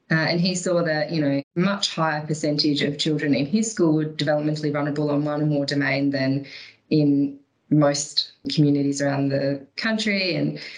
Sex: female